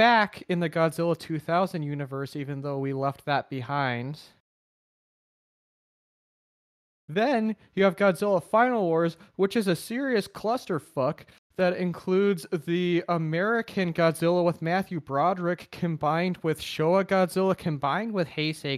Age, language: 20-39, English